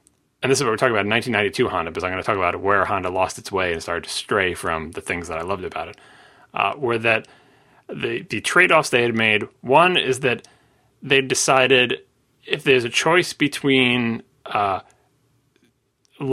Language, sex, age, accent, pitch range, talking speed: English, male, 30-49, American, 100-130 Hz, 200 wpm